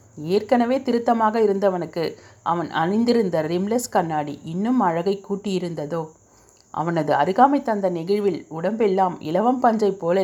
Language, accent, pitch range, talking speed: Tamil, native, 165-220 Hz, 105 wpm